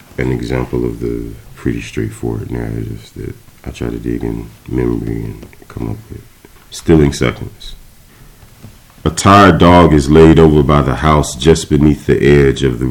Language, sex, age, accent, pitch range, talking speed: English, male, 40-59, American, 70-80 Hz, 165 wpm